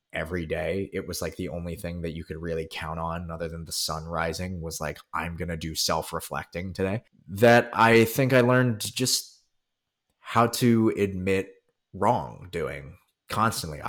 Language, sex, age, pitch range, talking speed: English, male, 20-39, 85-105 Hz, 165 wpm